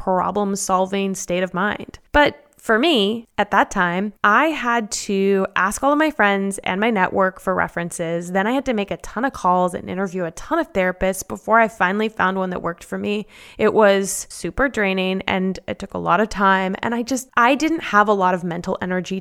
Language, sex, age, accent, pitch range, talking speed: English, female, 20-39, American, 190-240 Hz, 215 wpm